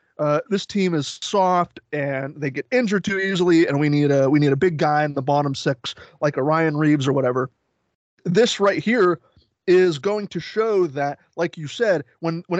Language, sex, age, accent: English, male, 20-39, American